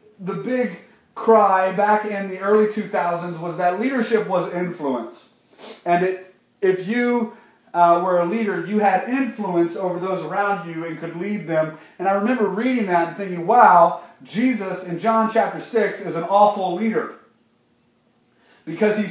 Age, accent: 40-59, American